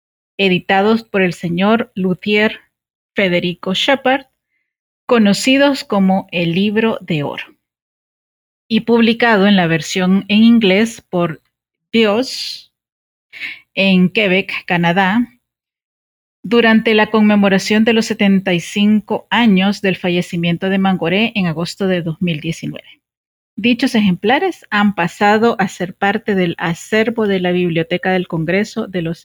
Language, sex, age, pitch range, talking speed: Spanish, female, 40-59, 185-230 Hz, 115 wpm